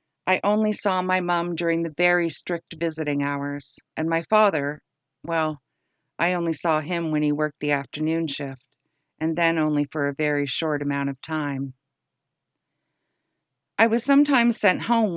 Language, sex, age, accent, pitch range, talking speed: English, female, 50-69, American, 145-180 Hz, 160 wpm